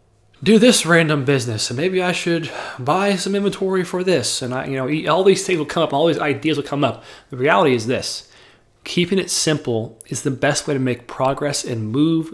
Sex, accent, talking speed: male, American, 220 wpm